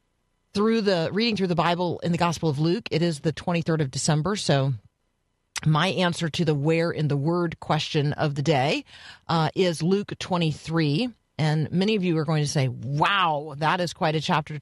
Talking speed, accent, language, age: 195 wpm, American, English, 40-59